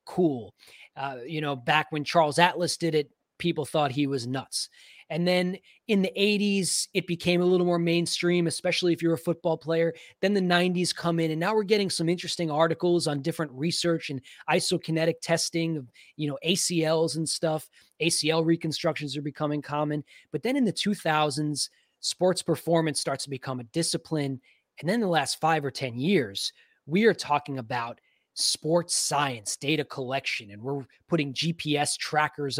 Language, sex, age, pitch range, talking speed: English, male, 20-39, 145-170 Hz, 175 wpm